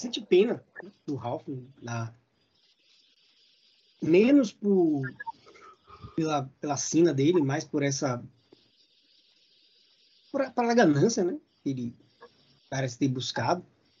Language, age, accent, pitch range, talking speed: Portuguese, 20-39, Brazilian, 125-160 Hz, 90 wpm